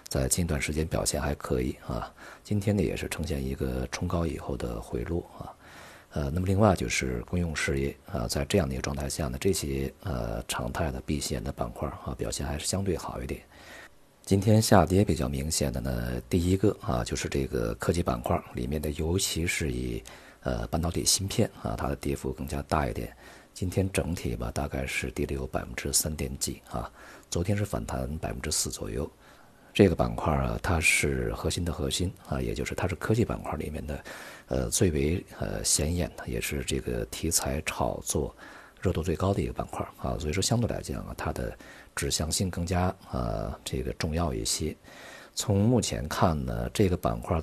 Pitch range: 70-90 Hz